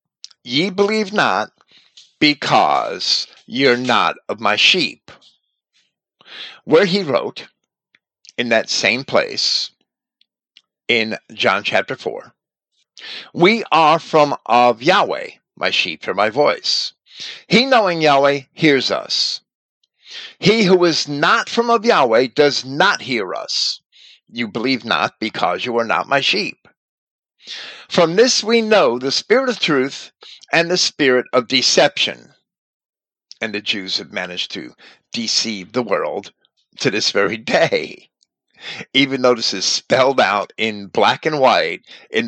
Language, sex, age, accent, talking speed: English, male, 50-69, American, 130 wpm